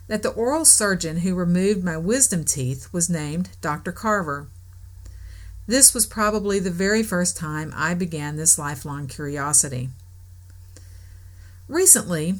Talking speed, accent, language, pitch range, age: 125 wpm, American, English, 125-195 Hz, 50-69